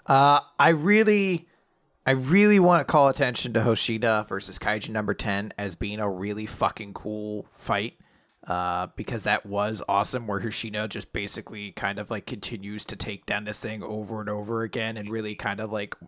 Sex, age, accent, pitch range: male, 30-49, American, 105-130 Hz